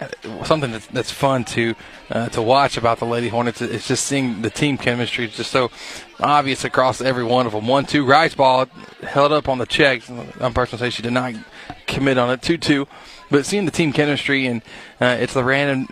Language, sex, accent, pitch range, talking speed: English, male, American, 125-145 Hz, 210 wpm